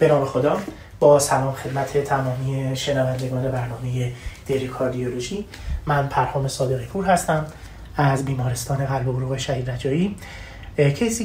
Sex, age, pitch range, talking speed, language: male, 30-49, 130-150 Hz, 125 wpm, Persian